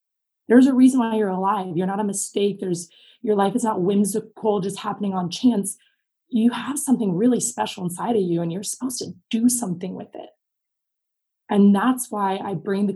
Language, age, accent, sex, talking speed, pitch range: English, 20-39, American, female, 195 wpm, 190-230 Hz